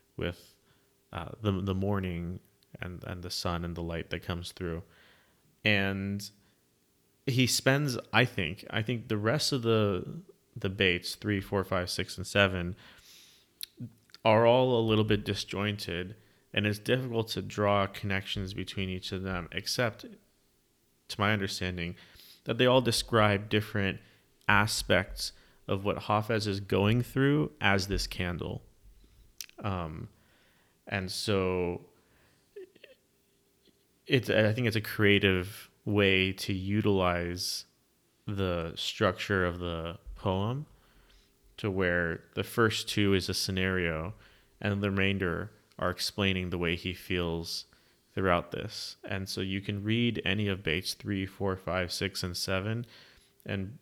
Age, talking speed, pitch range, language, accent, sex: 30-49, 135 wpm, 90-110 Hz, English, American, male